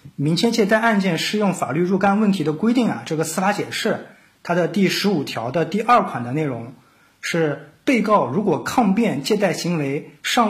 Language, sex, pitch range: Chinese, male, 155-225 Hz